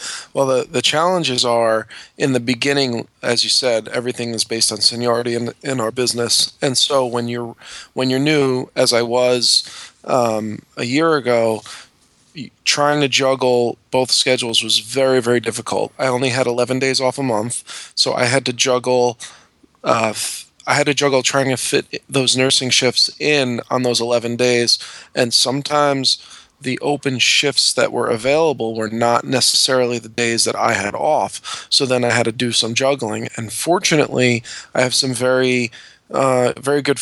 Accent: American